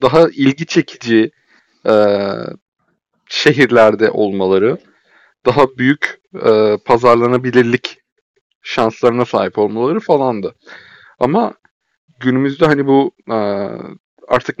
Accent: native